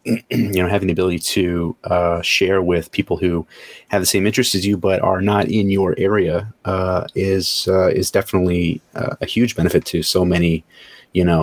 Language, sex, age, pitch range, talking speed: English, male, 30-49, 85-100 Hz, 195 wpm